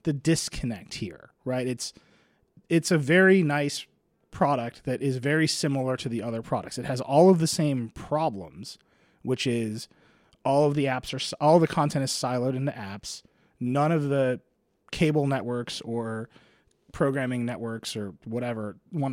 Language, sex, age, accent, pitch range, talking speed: English, male, 30-49, American, 115-150 Hz, 160 wpm